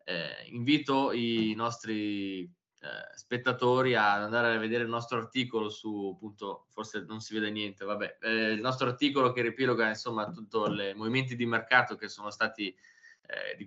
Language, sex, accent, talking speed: Italian, male, native, 165 wpm